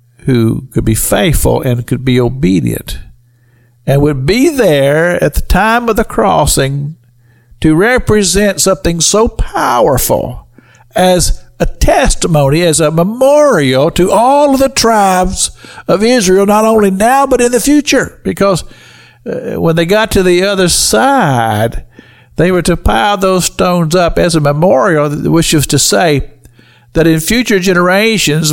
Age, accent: 60-79, American